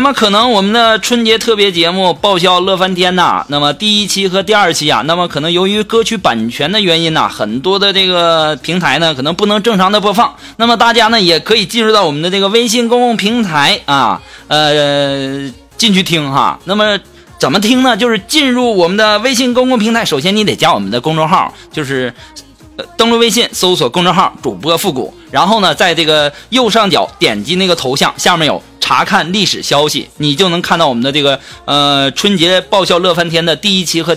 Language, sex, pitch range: Chinese, male, 170-235 Hz